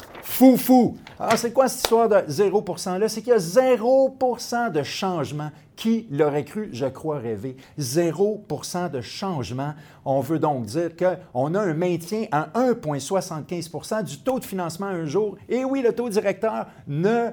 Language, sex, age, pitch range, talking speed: French, male, 50-69, 135-200 Hz, 165 wpm